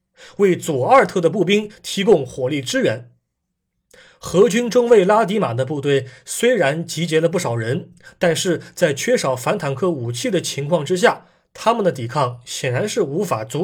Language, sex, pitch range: Chinese, male, 135-185 Hz